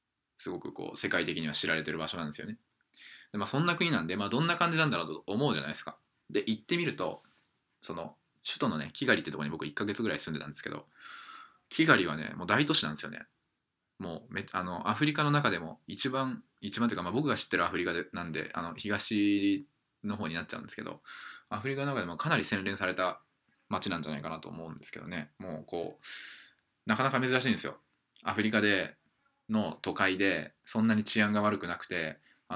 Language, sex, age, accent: Japanese, male, 20-39, native